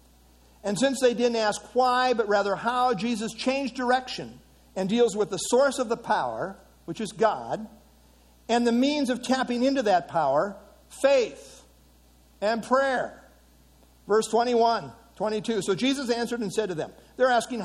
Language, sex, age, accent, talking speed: English, male, 60-79, American, 155 wpm